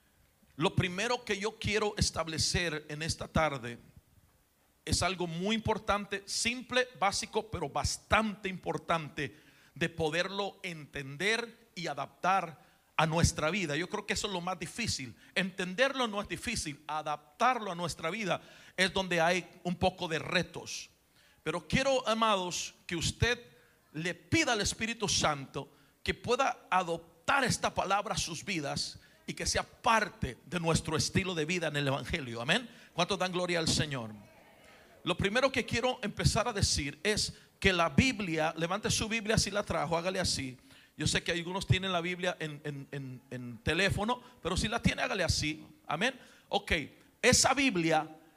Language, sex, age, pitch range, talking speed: Spanish, male, 40-59, 155-205 Hz, 155 wpm